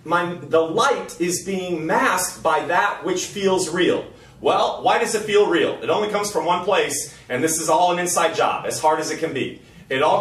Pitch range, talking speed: 140-180 Hz, 215 wpm